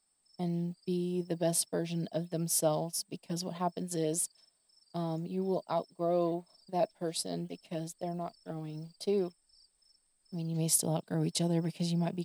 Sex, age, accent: female, 20-39, American